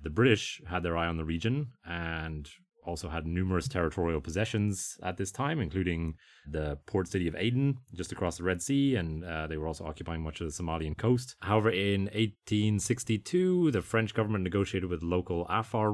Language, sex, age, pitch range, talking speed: English, male, 30-49, 80-105 Hz, 185 wpm